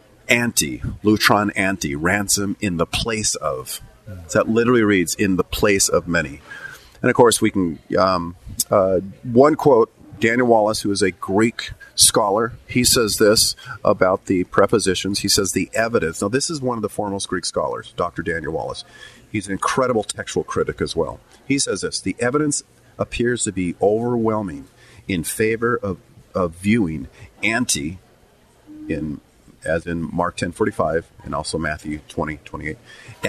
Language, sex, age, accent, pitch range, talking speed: English, male, 40-59, American, 95-115 Hz, 160 wpm